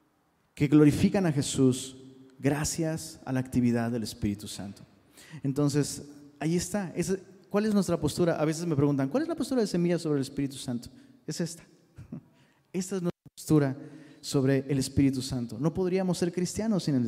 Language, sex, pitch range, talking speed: Spanish, male, 130-180 Hz, 170 wpm